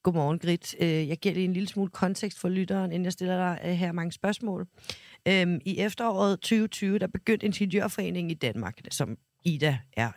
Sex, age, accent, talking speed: female, 40-59, native, 170 wpm